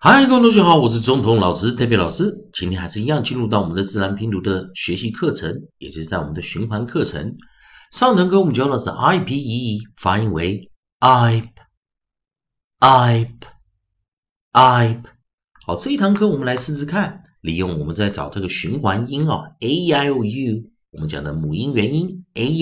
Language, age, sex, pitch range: Chinese, 50-69, male, 95-155 Hz